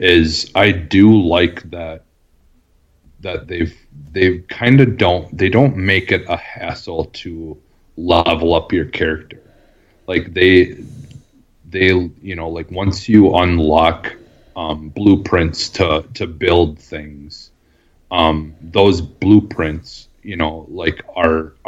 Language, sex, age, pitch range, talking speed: English, male, 30-49, 75-90 Hz, 120 wpm